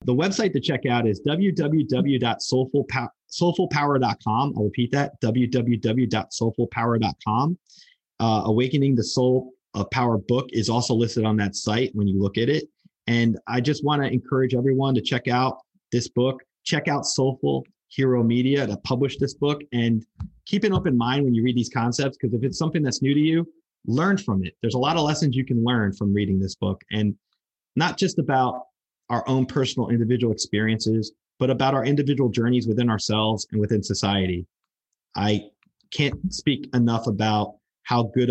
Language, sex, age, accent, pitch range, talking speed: English, male, 30-49, American, 110-135 Hz, 170 wpm